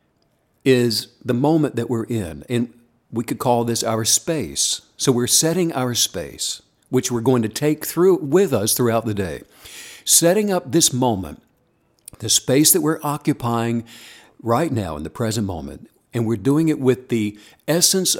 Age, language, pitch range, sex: 60-79, English, 110-145 Hz, male